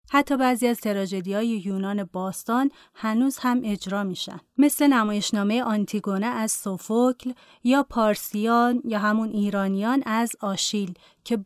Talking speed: 120 wpm